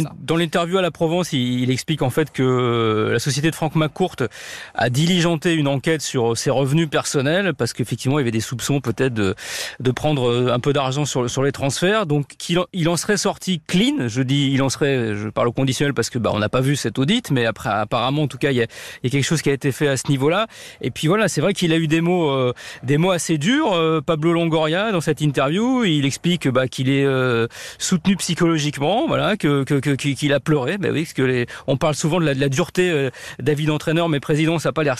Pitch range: 140-190 Hz